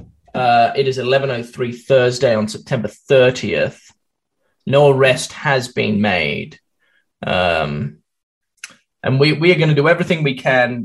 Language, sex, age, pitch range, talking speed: English, male, 10-29, 110-140 Hz, 145 wpm